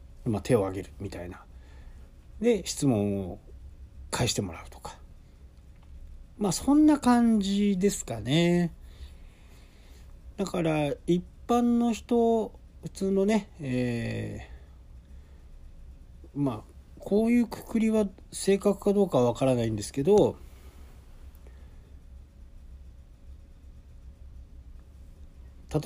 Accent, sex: native, male